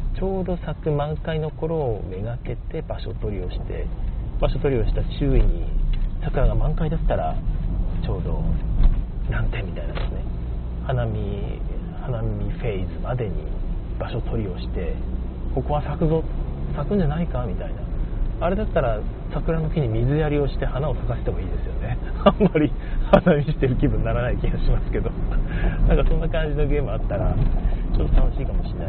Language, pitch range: Japanese, 100-155 Hz